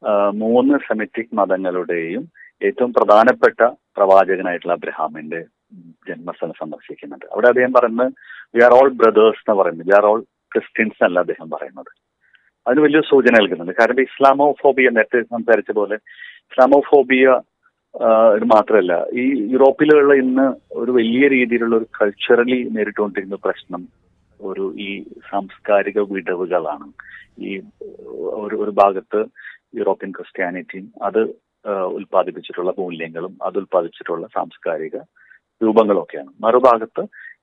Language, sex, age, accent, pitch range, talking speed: Malayalam, male, 30-49, native, 100-130 Hz, 105 wpm